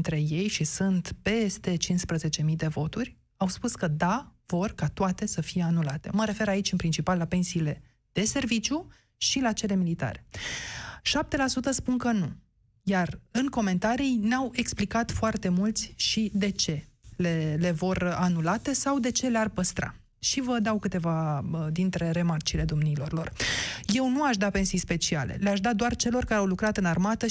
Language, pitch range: Romanian, 175-225 Hz